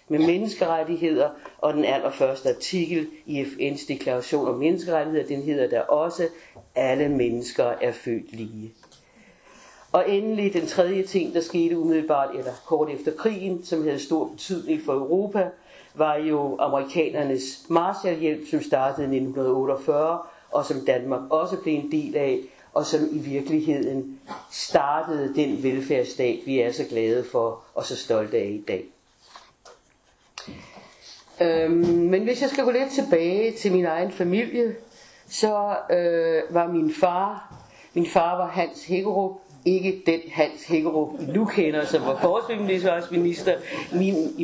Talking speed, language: 145 wpm, Danish